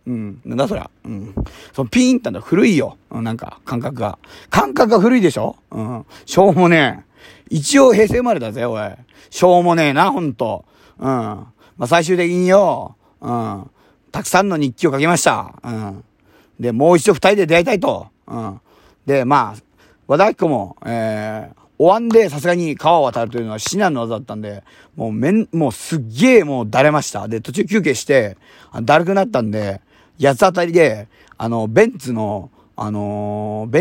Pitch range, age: 110-180 Hz, 40-59